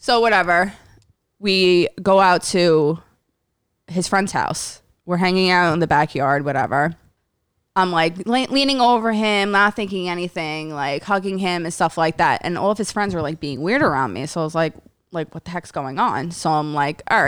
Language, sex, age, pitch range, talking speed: English, female, 20-39, 150-190 Hz, 195 wpm